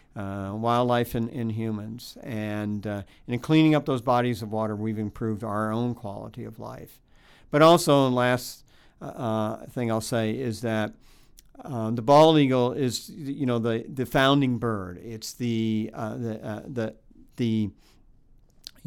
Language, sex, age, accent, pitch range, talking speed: English, male, 50-69, American, 105-125 Hz, 155 wpm